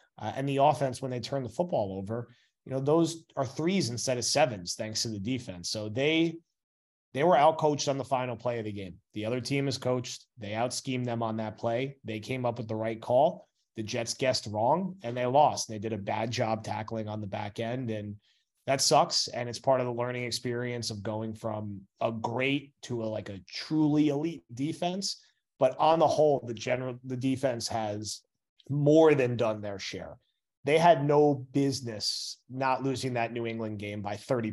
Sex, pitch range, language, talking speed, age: male, 110-135 Hz, English, 205 wpm, 30-49